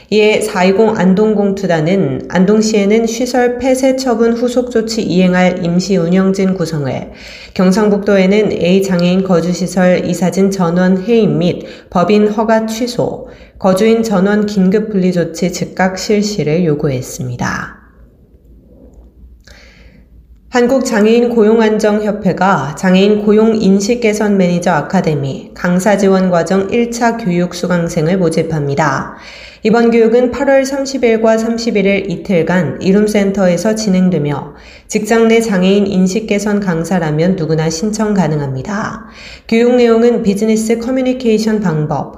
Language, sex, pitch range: Korean, female, 175-220 Hz